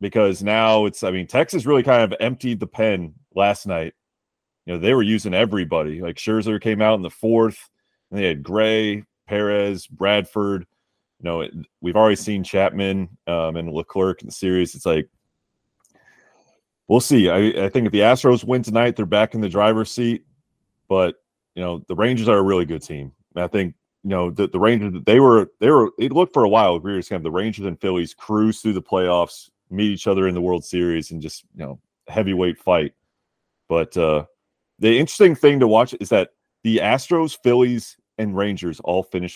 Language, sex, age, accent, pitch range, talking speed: English, male, 30-49, American, 90-110 Hz, 205 wpm